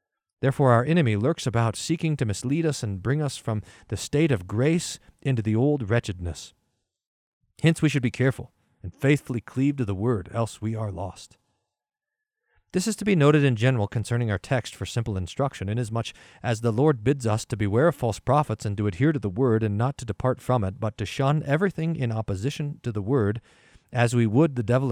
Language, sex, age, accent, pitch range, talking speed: English, male, 40-59, American, 110-145 Hz, 205 wpm